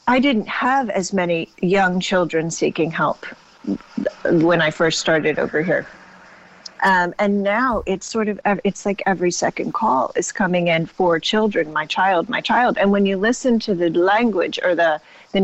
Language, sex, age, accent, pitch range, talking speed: English, female, 40-59, American, 175-215 Hz, 175 wpm